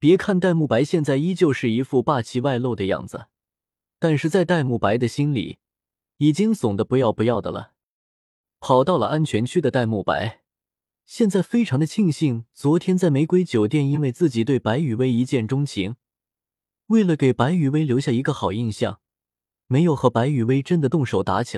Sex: male